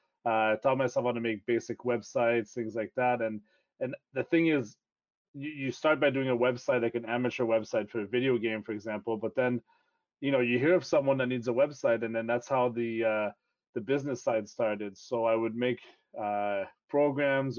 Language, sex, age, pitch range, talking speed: English, male, 30-49, 110-125 Hz, 210 wpm